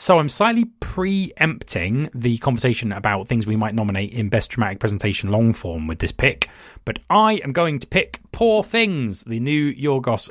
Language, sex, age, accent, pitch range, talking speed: English, male, 30-49, British, 100-145 Hz, 180 wpm